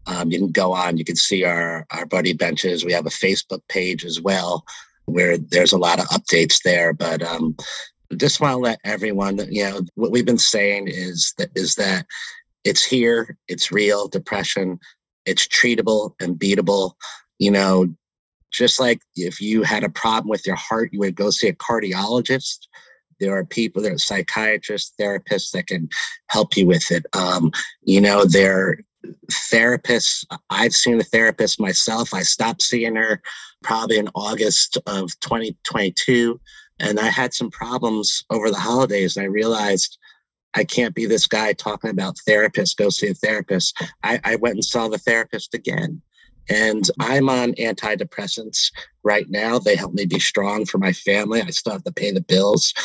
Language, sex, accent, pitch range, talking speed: English, male, American, 95-115 Hz, 175 wpm